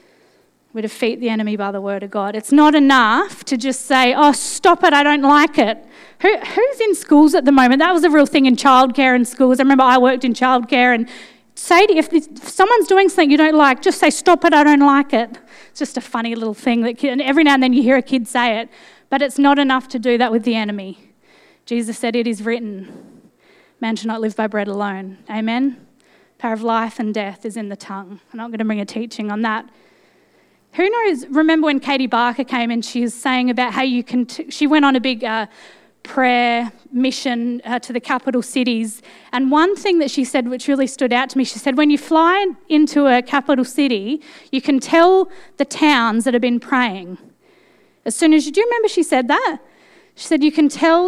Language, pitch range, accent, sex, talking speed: English, 230-290 Hz, Australian, female, 225 wpm